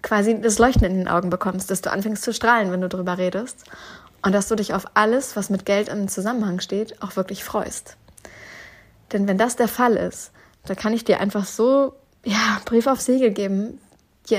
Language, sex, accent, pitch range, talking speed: German, female, German, 190-215 Hz, 205 wpm